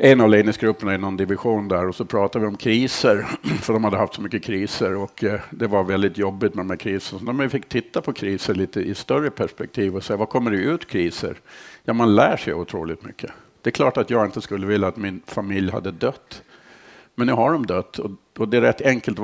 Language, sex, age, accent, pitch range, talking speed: Swedish, male, 50-69, Norwegian, 95-115 Hz, 235 wpm